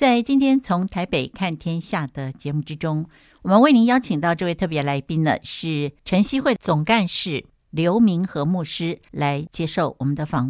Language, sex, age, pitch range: Chinese, female, 60-79, 150-205 Hz